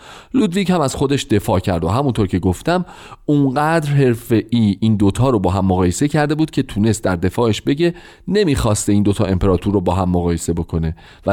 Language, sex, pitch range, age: Persian, male, 95-145 Hz, 40-59